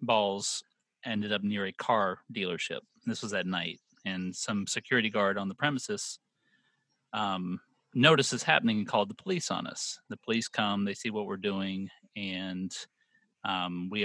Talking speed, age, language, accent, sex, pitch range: 160 wpm, 30-49, English, American, male, 95-115 Hz